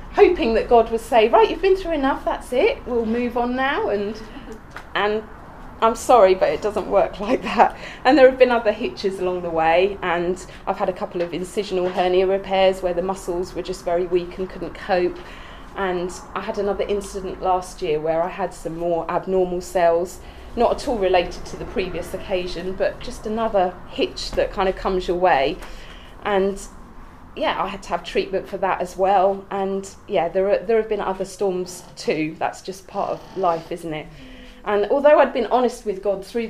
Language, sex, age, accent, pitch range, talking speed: English, female, 20-39, British, 185-235 Hz, 200 wpm